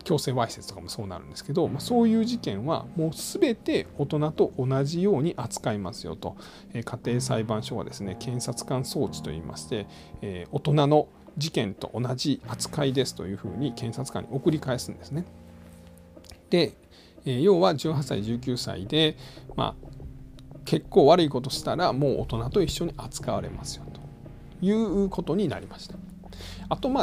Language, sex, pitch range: Japanese, male, 105-170 Hz